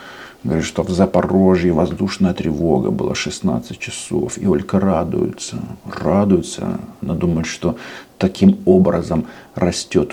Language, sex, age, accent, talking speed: Russian, male, 50-69, native, 115 wpm